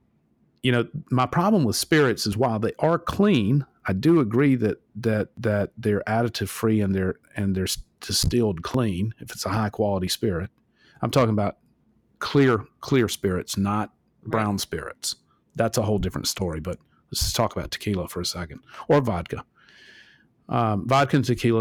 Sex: male